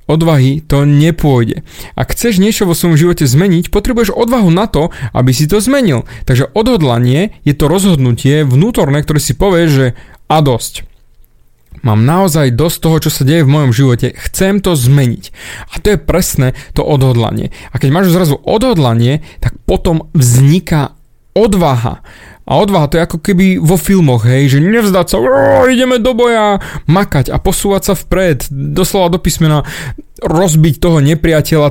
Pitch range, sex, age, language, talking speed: 135-180 Hz, male, 30-49, Slovak, 160 wpm